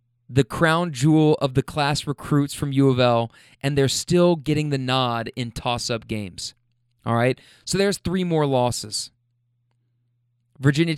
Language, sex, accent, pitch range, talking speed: English, male, American, 120-165 Hz, 140 wpm